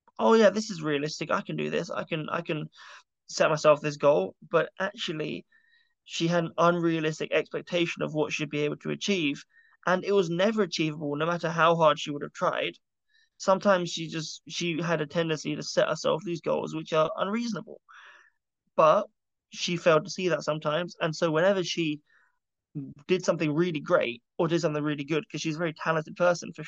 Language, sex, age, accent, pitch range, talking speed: English, male, 20-39, British, 150-175 Hz, 195 wpm